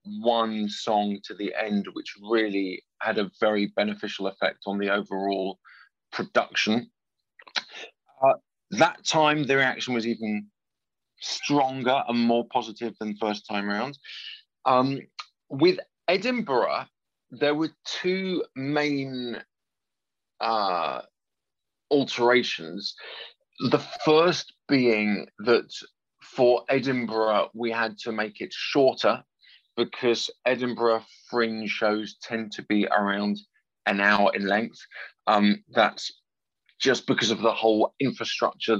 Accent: British